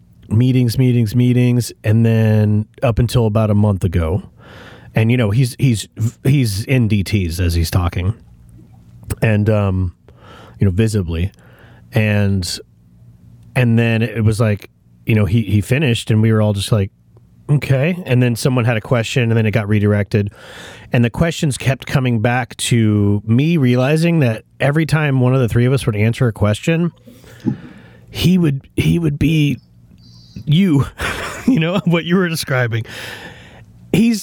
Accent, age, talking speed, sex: American, 30-49, 160 wpm, male